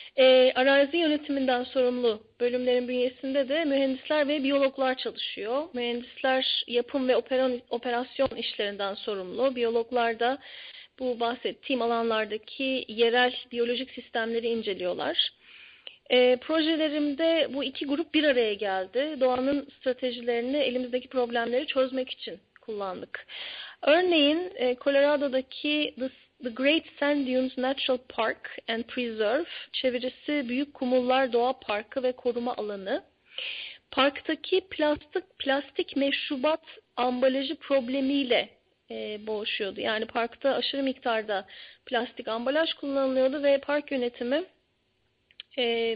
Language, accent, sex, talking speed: Turkish, native, female, 105 wpm